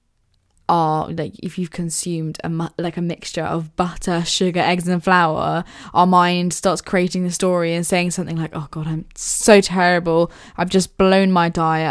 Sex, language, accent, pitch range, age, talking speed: female, English, British, 165-185 Hz, 10-29, 180 wpm